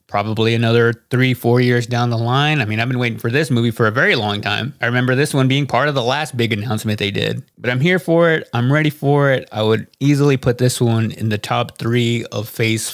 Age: 20-39